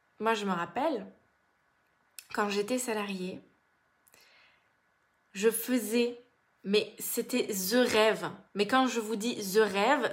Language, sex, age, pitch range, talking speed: French, female, 20-39, 185-245 Hz, 120 wpm